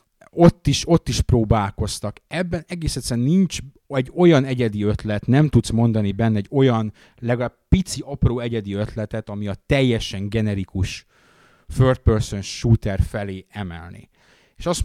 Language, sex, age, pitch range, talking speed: Hungarian, male, 30-49, 105-130 Hz, 135 wpm